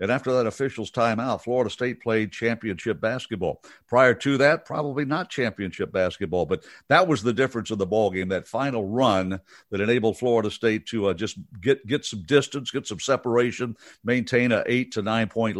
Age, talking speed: 60-79, 180 wpm